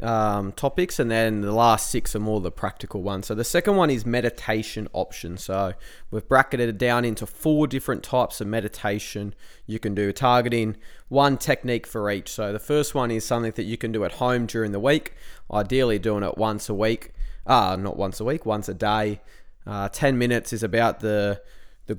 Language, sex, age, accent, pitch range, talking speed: English, male, 20-39, Australian, 100-120 Hz, 200 wpm